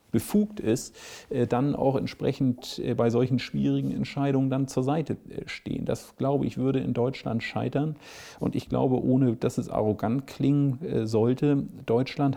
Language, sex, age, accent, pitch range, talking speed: Danish, male, 50-69, German, 115-135 Hz, 145 wpm